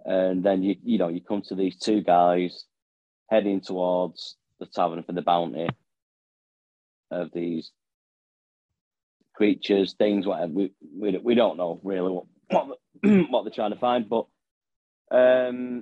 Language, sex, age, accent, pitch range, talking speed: English, male, 30-49, British, 85-105 Hz, 140 wpm